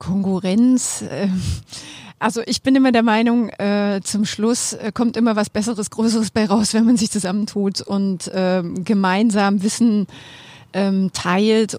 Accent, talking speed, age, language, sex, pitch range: German, 120 wpm, 30-49, German, female, 175-210 Hz